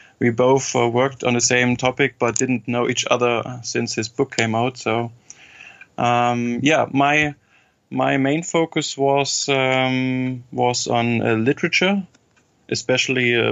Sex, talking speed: male, 145 wpm